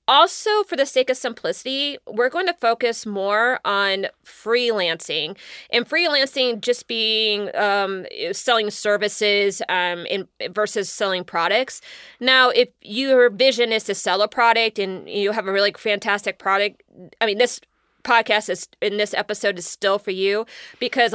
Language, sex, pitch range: English, female, 195-235 Hz